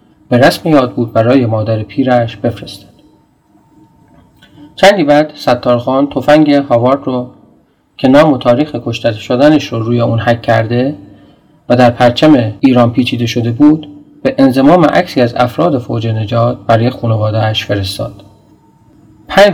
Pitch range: 115-145 Hz